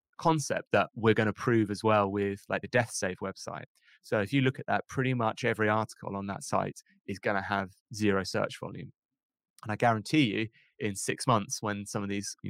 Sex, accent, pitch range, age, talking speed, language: male, British, 100-115 Hz, 20-39, 220 wpm, English